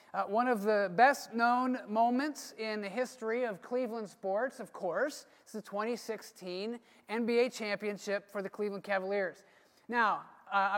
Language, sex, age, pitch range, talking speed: English, male, 30-49, 205-250 Hz, 140 wpm